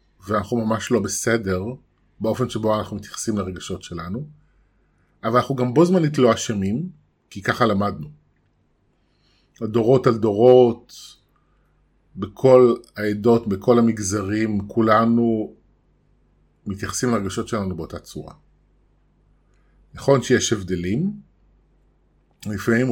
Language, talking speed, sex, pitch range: Hebrew, 100 wpm, male, 95-120 Hz